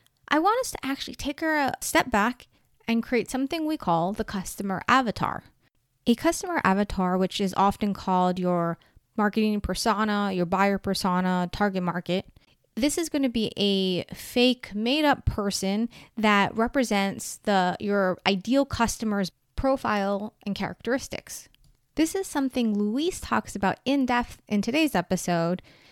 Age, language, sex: 20-39, English, female